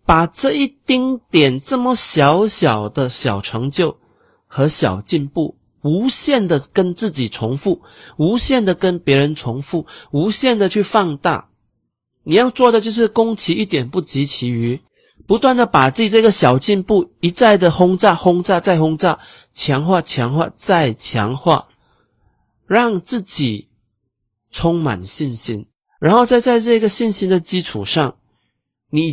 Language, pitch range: Chinese, 120-195 Hz